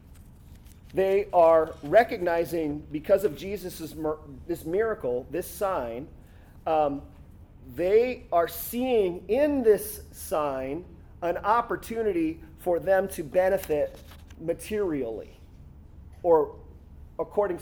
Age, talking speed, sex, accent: 40-59, 85 wpm, male, American